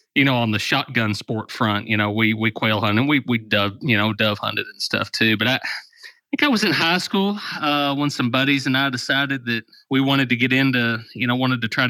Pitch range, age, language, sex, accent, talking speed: 110-130 Hz, 30-49, English, male, American, 250 wpm